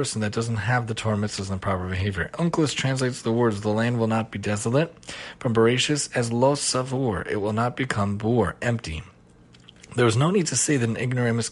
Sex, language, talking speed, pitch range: male, English, 210 wpm, 110-140 Hz